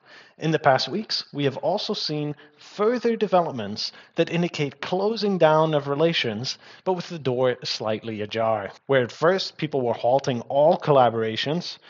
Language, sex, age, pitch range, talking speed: English, male, 30-49, 125-175 Hz, 150 wpm